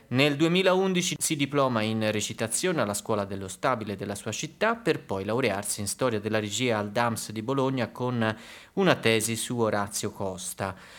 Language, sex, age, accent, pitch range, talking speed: Italian, male, 30-49, native, 105-140 Hz, 165 wpm